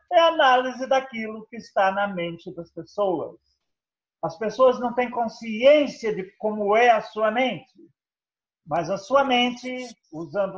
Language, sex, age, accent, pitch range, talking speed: English, male, 40-59, Brazilian, 135-210 Hz, 145 wpm